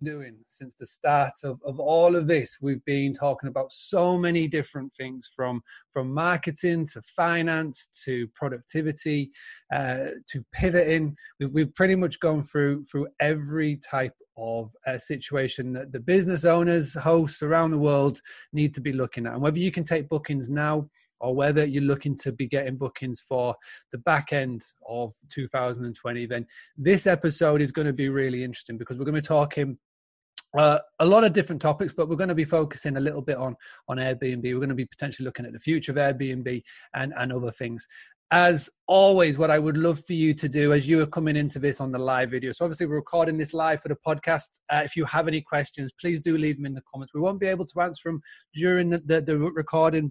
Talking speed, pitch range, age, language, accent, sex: 210 wpm, 130-160 Hz, 20-39, English, British, male